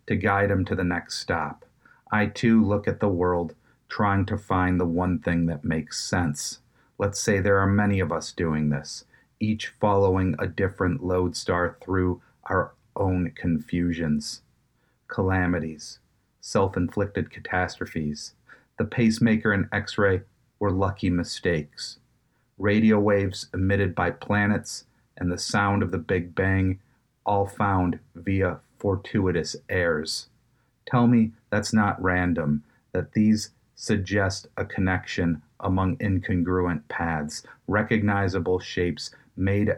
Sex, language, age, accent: male, English, 40-59, American